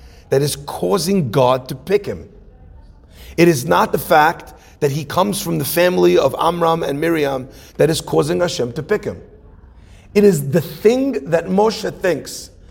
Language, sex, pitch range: English, male, 150-220 Hz